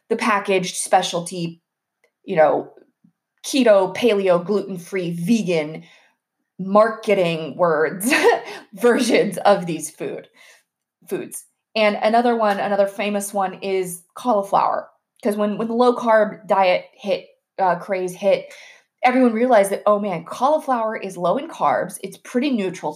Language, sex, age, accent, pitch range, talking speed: English, female, 20-39, American, 195-260 Hz, 130 wpm